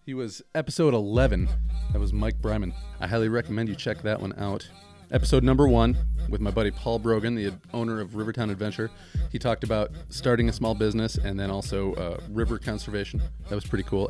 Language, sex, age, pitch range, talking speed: English, male, 30-49, 95-115 Hz, 195 wpm